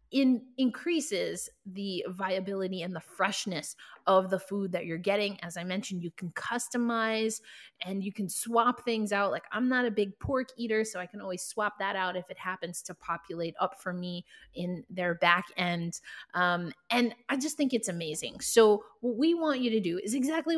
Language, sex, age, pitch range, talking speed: English, female, 20-39, 190-260 Hz, 195 wpm